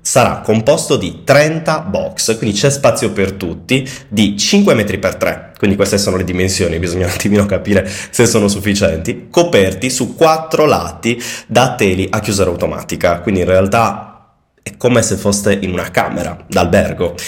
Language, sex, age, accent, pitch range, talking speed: Italian, male, 20-39, native, 95-135 Hz, 165 wpm